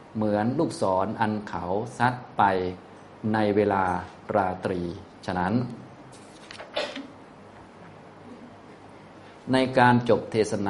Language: Thai